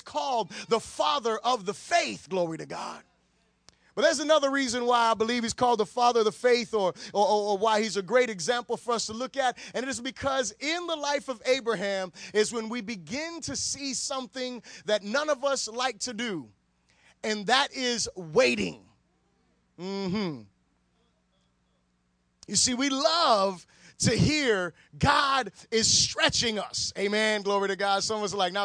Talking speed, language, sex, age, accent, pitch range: 180 wpm, English, male, 30-49, American, 205-265 Hz